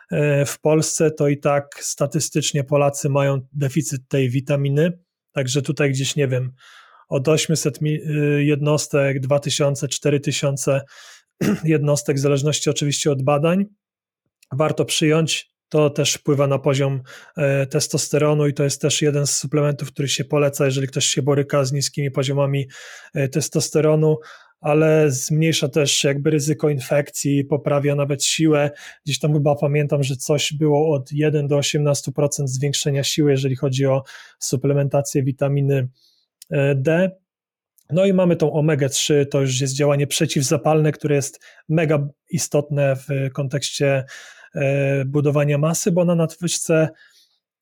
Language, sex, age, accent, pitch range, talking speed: Polish, male, 30-49, native, 140-155 Hz, 130 wpm